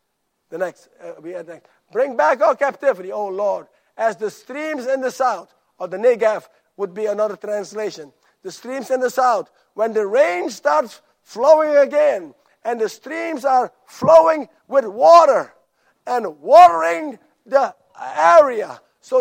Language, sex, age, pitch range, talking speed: English, male, 50-69, 210-285 Hz, 155 wpm